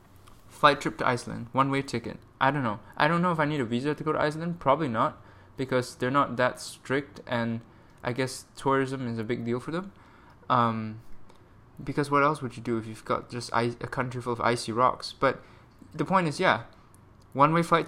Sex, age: male, 20-39